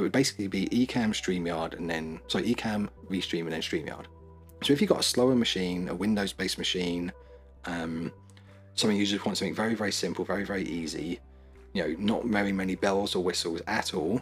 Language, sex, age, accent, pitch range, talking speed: English, male, 30-49, British, 80-100 Hz, 200 wpm